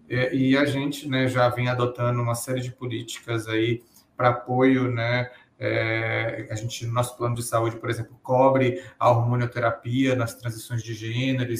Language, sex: Portuguese, male